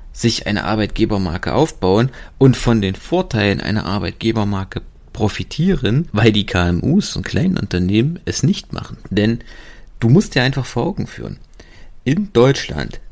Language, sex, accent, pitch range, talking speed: German, male, German, 105-130 Hz, 135 wpm